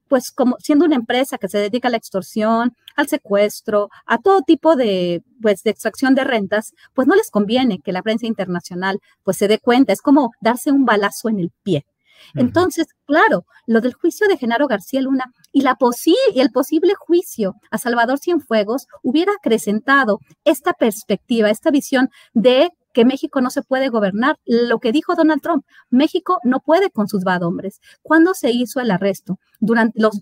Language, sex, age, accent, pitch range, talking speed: Spanish, female, 40-59, American, 210-280 Hz, 185 wpm